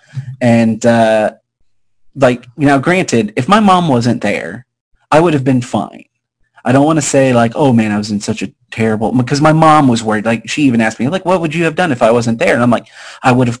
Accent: American